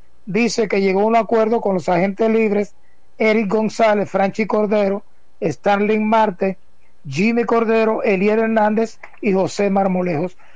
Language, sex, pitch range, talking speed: Spanish, male, 195-230 Hz, 130 wpm